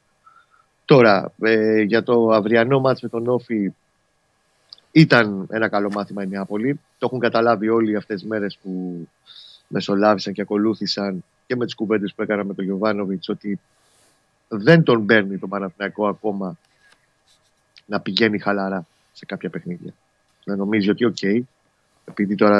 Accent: native